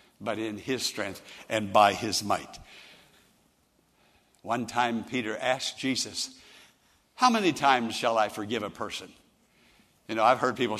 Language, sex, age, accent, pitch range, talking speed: English, male, 60-79, American, 120-185 Hz, 145 wpm